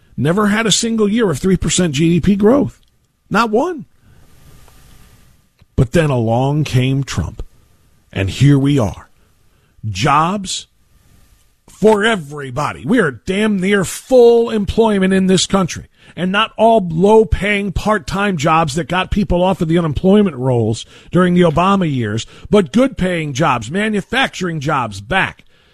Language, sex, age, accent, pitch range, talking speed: English, male, 50-69, American, 130-190 Hz, 130 wpm